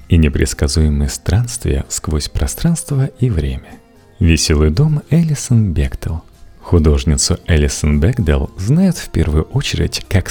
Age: 40-59